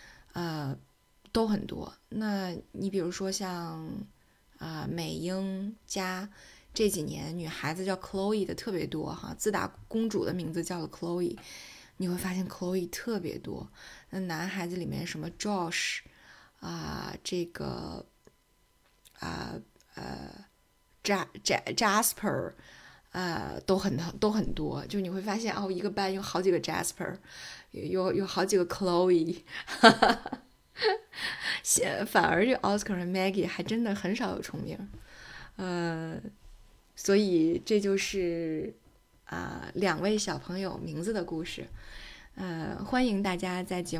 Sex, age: female, 20-39